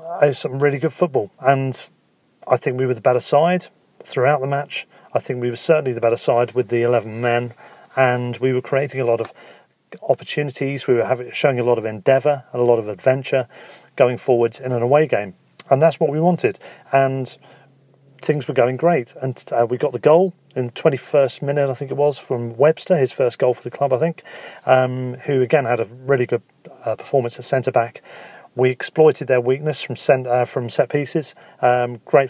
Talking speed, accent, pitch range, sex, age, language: 200 wpm, British, 120-140 Hz, male, 40-59, English